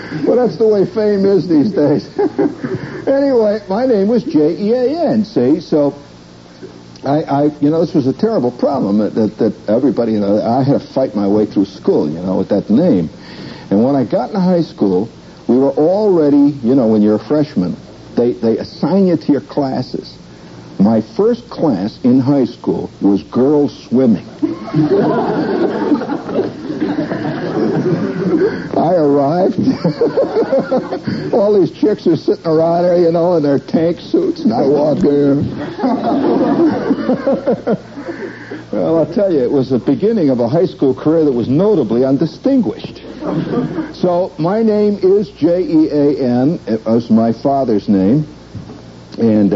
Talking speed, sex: 150 wpm, male